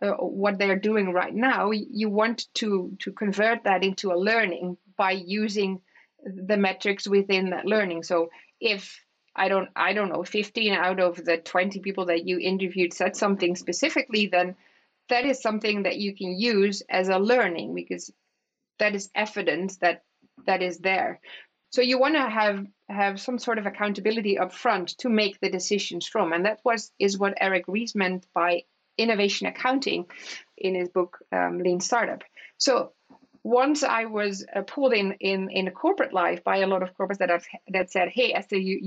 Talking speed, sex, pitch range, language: 180 wpm, female, 180-215 Hz, English